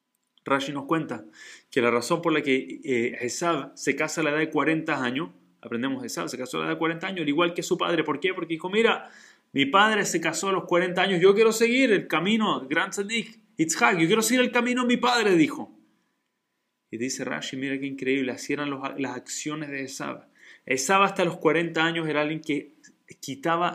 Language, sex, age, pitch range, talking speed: Spanish, male, 30-49, 145-195 Hz, 210 wpm